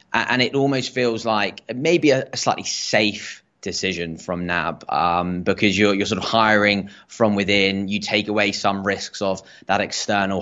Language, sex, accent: English, male, British